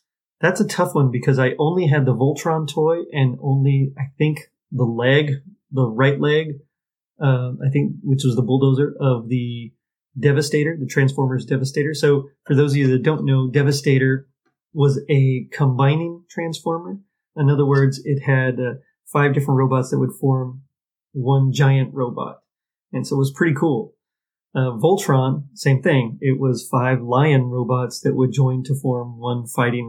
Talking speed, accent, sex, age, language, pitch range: 165 wpm, American, male, 30-49, English, 130-155 Hz